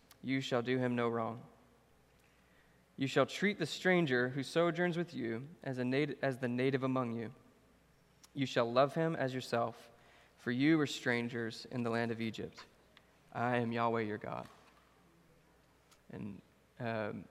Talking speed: 155 wpm